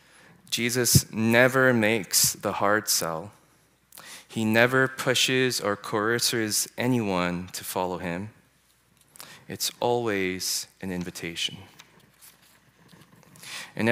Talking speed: 85 wpm